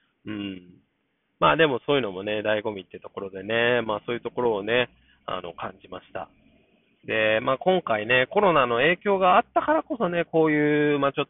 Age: 20-39